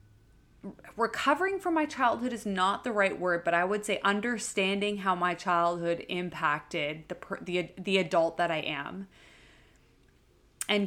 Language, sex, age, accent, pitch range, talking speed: English, female, 20-39, American, 175-210 Hz, 145 wpm